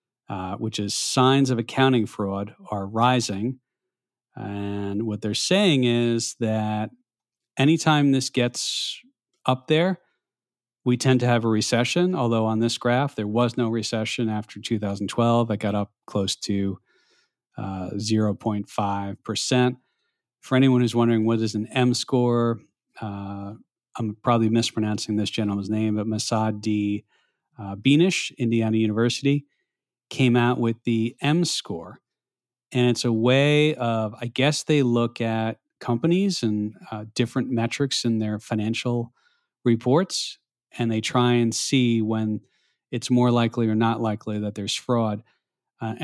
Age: 40-59